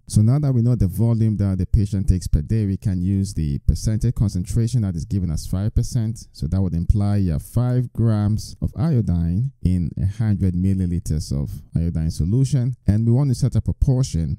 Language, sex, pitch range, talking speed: English, male, 85-110 Hz, 195 wpm